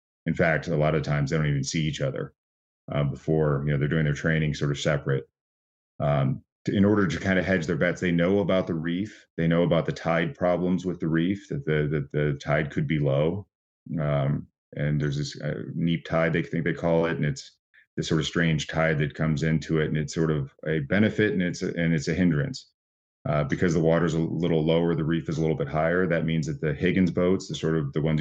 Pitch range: 75-85 Hz